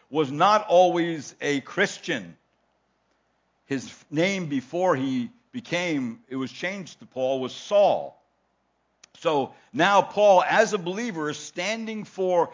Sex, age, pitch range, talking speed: male, 60-79, 140-190 Hz, 125 wpm